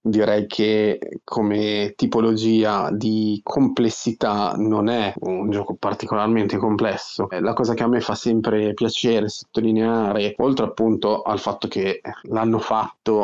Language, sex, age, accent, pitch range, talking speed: Italian, male, 20-39, native, 105-115 Hz, 125 wpm